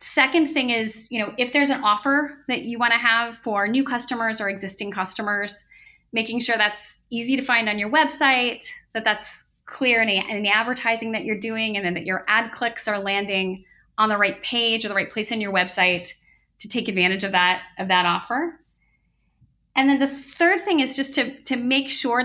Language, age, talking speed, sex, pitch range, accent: English, 30-49, 205 wpm, female, 200-250 Hz, American